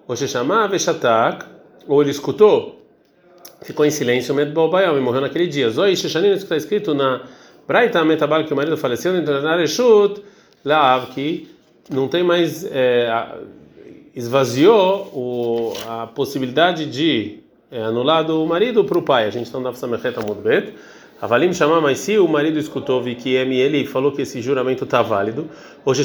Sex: male